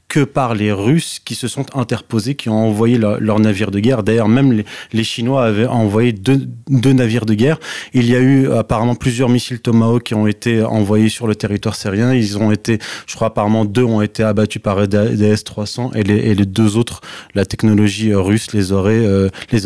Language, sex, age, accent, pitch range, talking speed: French, male, 20-39, French, 105-125 Hz, 210 wpm